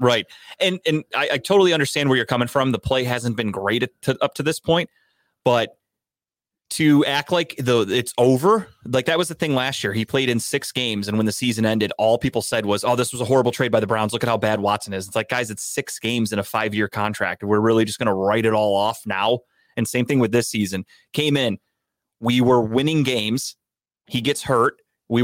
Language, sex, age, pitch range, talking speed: English, male, 30-49, 110-140 Hz, 240 wpm